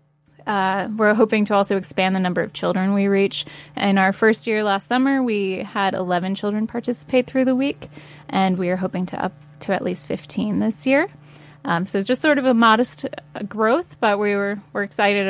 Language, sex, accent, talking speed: English, female, American, 210 wpm